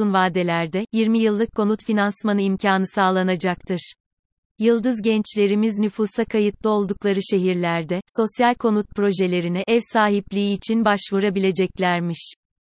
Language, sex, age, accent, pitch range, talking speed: Turkish, female, 30-49, native, 190-220 Hz, 95 wpm